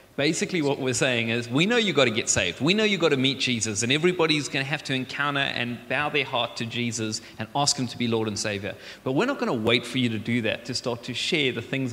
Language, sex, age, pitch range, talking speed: English, male, 30-49, 115-135 Hz, 285 wpm